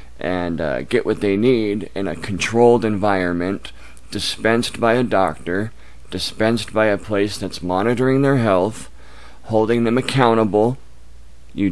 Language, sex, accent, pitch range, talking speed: English, male, American, 80-110 Hz, 135 wpm